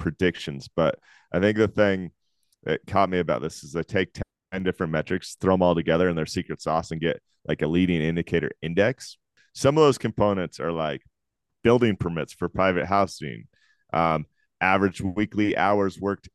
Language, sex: English, male